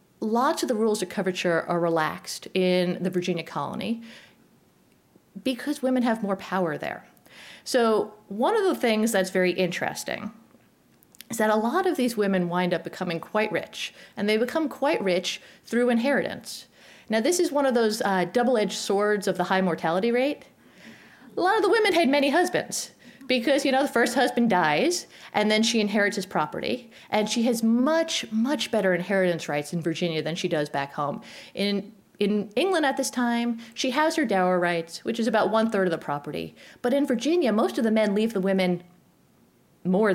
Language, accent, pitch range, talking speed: English, American, 190-265 Hz, 185 wpm